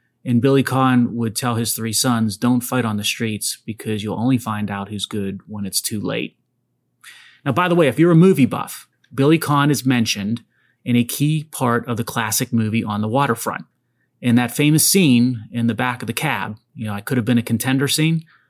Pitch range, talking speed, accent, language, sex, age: 110-130 Hz, 215 wpm, American, English, male, 30-49